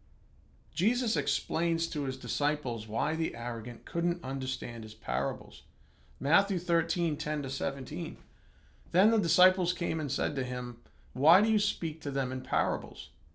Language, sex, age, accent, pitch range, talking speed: English, male, 50-69, American, 110-170 Hz, 150 wpm